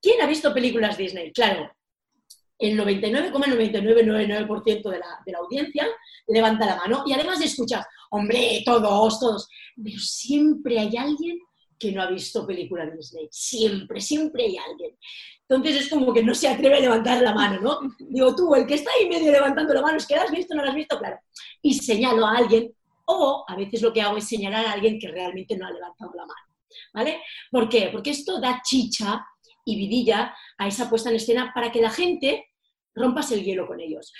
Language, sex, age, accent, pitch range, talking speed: Spanish, female, 30-49, Spanish, 220-280 Hz, 200 wpm